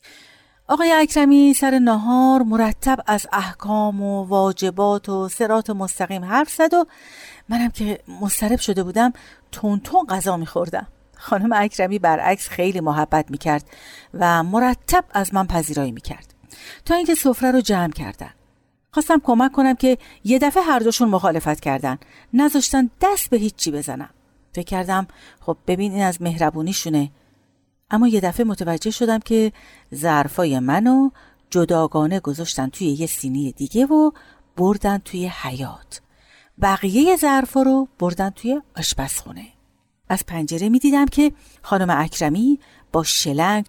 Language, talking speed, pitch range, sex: Persian, 135 wpm, 170-260 Hz, female